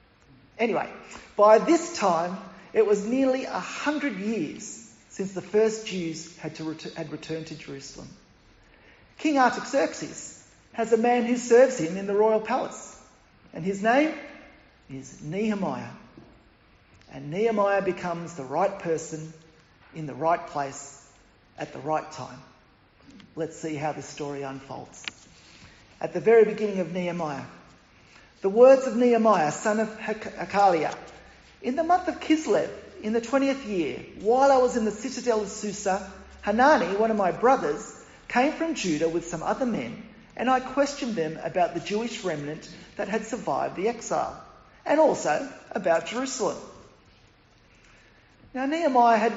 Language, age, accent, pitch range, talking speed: English, 40-59, Australian, 165-245 Hz, 145 wpm